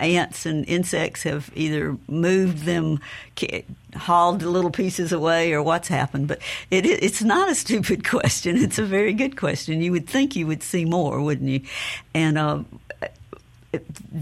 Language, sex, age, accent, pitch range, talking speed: English, female, 60-79, American, 140-175 Hz, 155 wpm